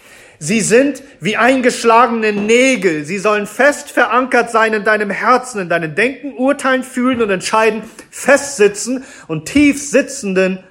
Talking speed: 135 wpm